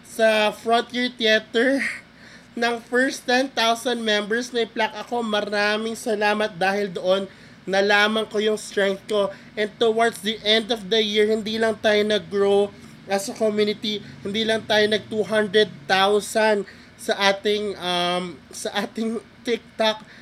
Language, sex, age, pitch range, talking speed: Filipino, male, 20-39, 195-215 Hz, 130 wpm